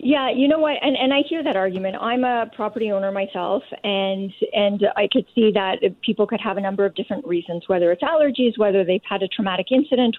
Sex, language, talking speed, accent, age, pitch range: female, English, 225 wpm, American, 40-59, 190-235 Hz